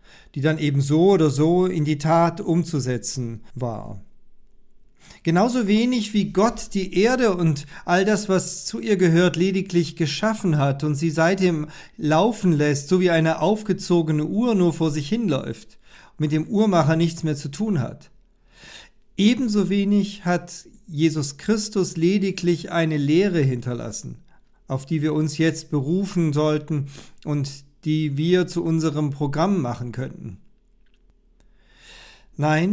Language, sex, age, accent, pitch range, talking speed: German, male, 50-69, German, 150-185 Hz, 140 wpm